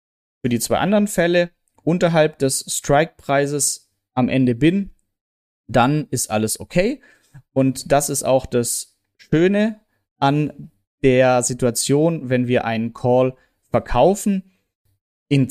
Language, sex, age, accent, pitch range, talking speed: German, male, 30-49, German, 130-175 Hz, 115 wpm